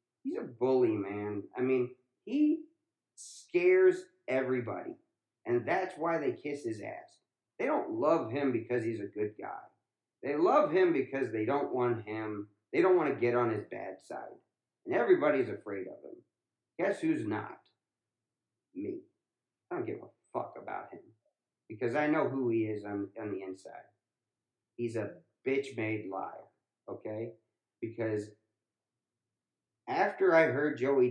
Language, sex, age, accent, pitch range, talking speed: English, male, 40-59, American, 110-165 Hz, 150 wpm